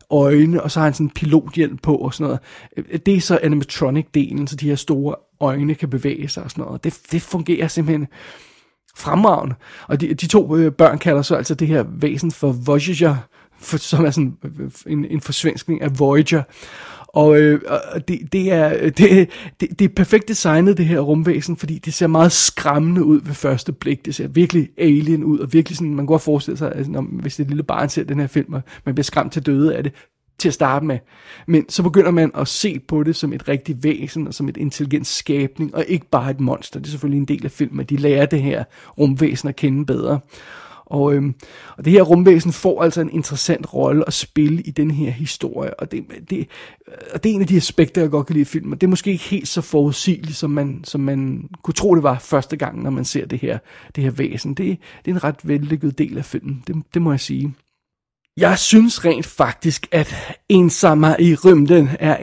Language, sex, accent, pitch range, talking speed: Danish, male, native, 145-165 Hz, 220 wpm